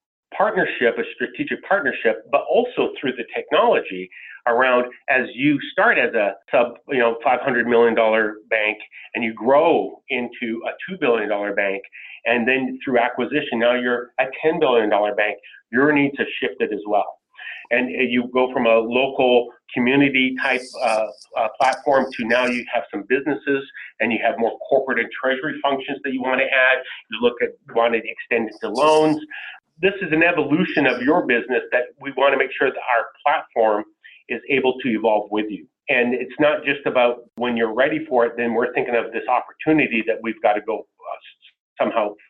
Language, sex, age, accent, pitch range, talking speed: English, male, 40-59, American, 115-140 Hz, 185 wpm